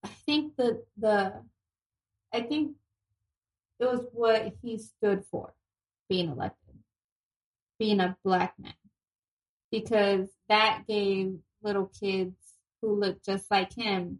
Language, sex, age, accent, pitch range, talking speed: English, female, 20-39, American, 185-220 Hz, 120 wpm